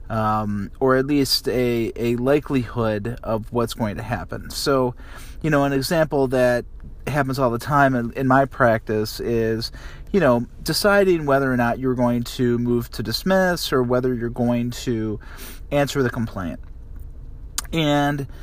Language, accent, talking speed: English, American, 155 wpm